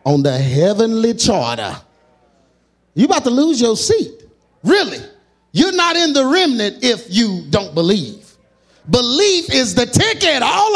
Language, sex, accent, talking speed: English, male, American, 140 wpm